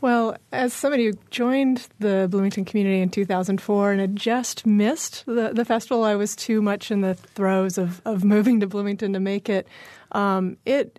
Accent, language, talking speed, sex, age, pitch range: American, English, 195 wpm, female, 30-49, 190-215 Hz